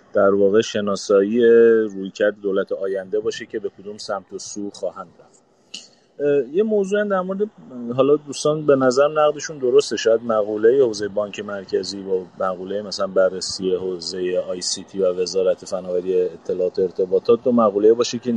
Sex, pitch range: male, 110-155 Hz